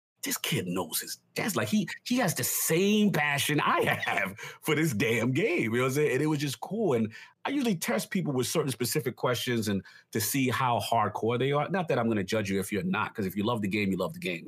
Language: English